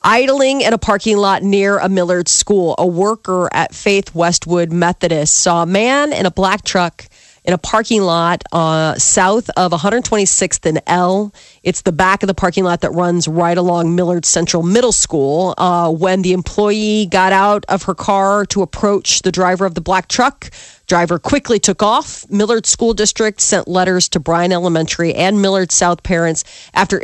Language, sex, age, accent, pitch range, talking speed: English, female, 40-59, American, 175-215 Hz, 180 wpm